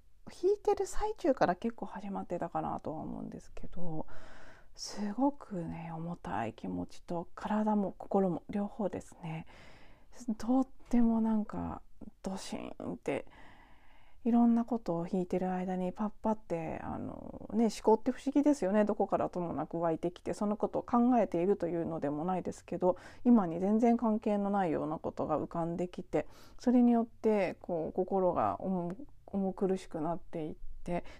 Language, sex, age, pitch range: Japanese, female, 40-59, 175-235 Hz